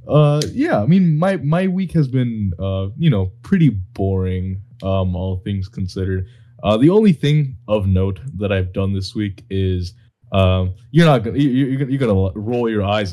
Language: English